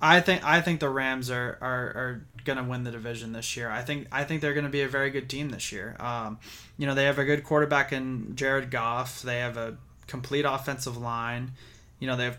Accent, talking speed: American, 245 wpm